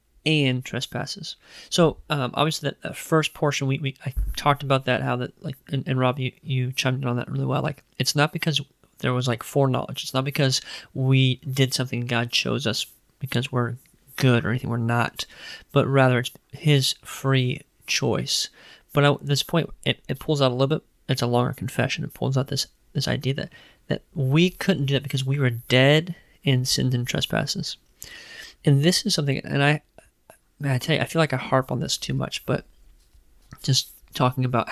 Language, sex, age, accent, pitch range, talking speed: English, male, 20-39, American, 130-145 Hz, 200 wpm